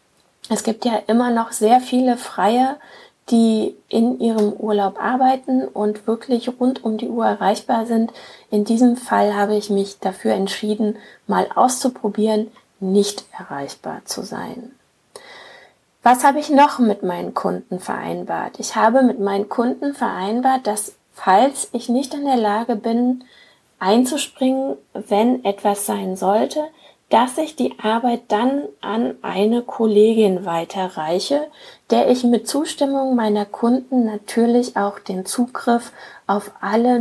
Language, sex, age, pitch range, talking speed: German, female, 30-49, 210-255 Hz, 135 wpm